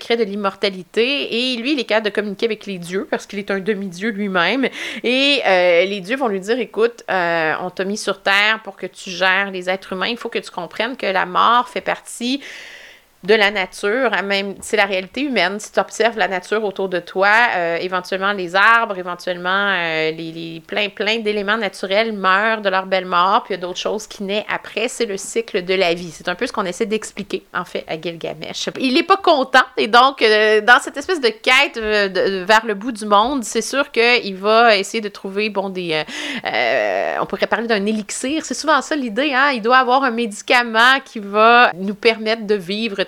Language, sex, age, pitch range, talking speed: French, female, 30-49, 195-250 Hz, 225 wpm